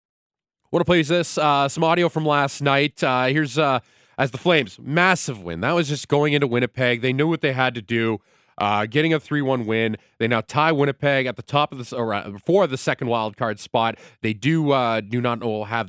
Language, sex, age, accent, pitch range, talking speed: English, male, 30-49, American, 110-145 Hz, 220 wpm